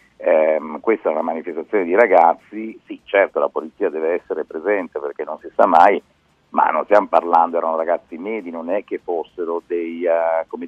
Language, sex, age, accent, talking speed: Italian, male, 50-69, native, 185 wpm